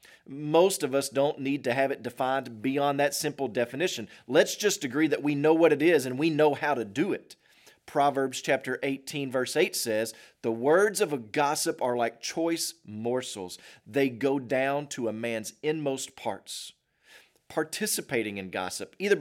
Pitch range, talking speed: 125-165 Hz, 170 wpm